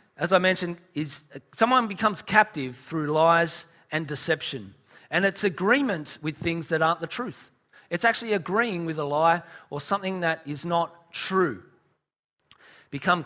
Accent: Australian